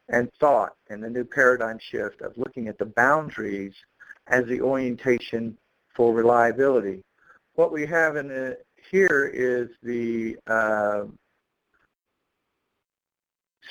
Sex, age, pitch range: male, 50-69, 115-140 Hz